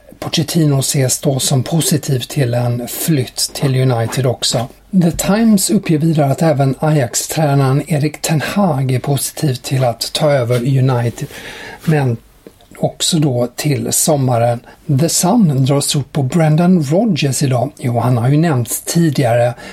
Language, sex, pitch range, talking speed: English, male, 130-160 Hz, 145 wpm